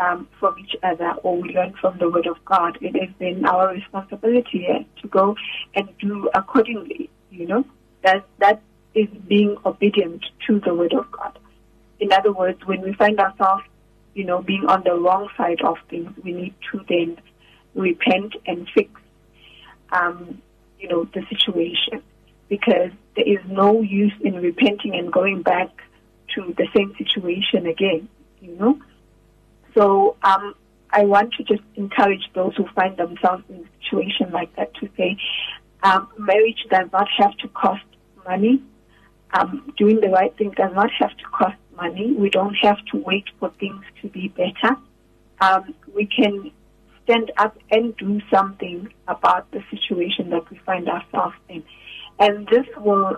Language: English